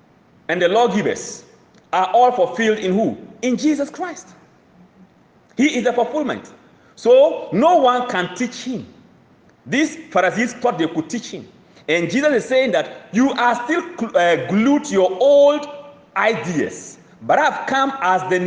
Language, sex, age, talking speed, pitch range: English, male, 40-59, 155 wpm, 175-260 Hz